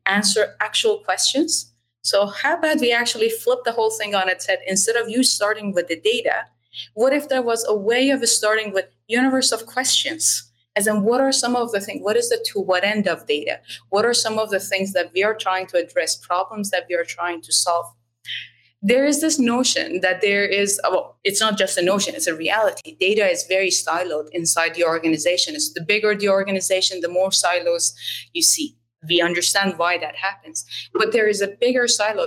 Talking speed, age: 210 wpm, 20-39